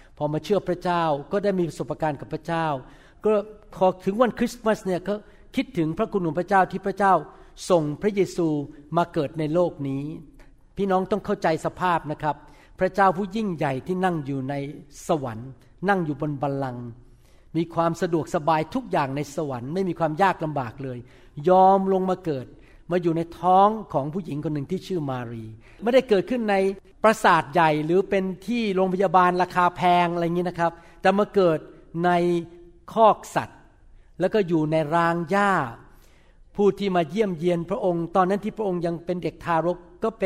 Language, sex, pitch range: Thai, male, 155-195 Hz